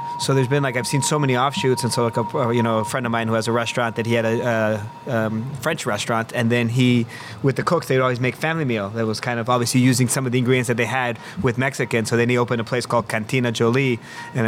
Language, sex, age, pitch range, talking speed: English, male, 30-49, 115-135 Hz, 280 wpm